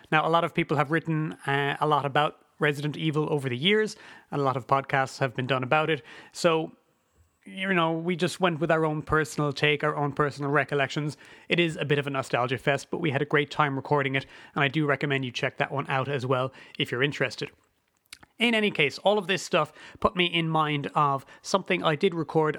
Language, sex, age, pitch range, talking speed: English, male, 30-49, 140-170 Hz, 230 wpm